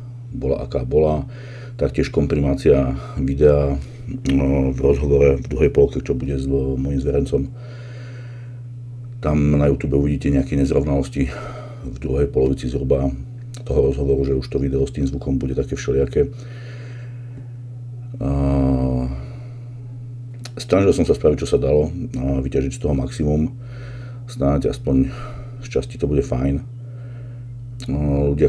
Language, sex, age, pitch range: Slovak, male, 50-69, 75-120 Hz